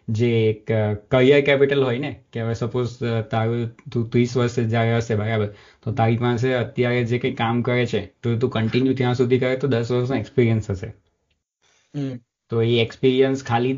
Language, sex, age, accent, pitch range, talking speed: Gujarati, male, 20-39, native, 115-135 Hz, 170 wpm